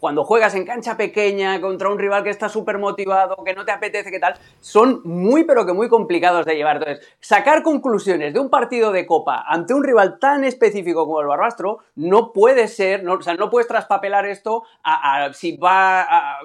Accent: Spanish